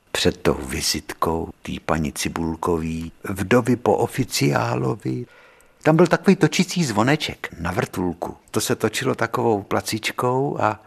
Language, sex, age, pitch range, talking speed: Czech, male, 60-79, 95-130 Hz, 120 wpm